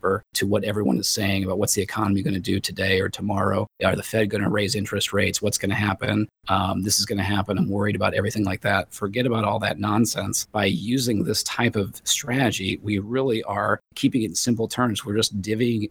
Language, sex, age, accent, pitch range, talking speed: English, male, 30-49, American, 95-110 Hz, 230 wpm